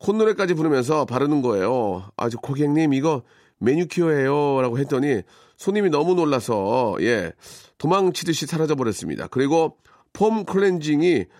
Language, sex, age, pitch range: Korean, male, 40-59, 115-170 Hz